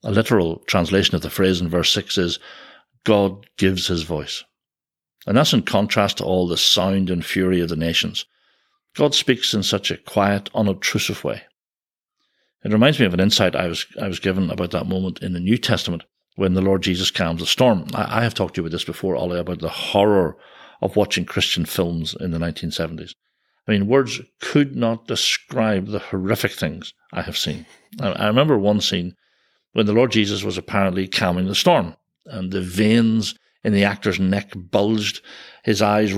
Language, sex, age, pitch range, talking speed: English, male, 60-79, 90-110 Hz, 190 wpm